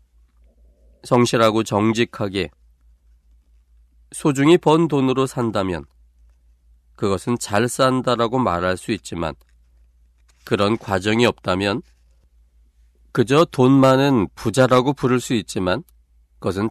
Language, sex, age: Korean, male, 40-59